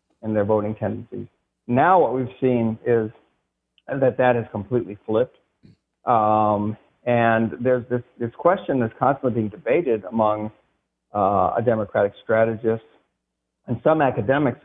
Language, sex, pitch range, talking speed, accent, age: English, male, 105-120 Hz, 130 wpm, American, 50-69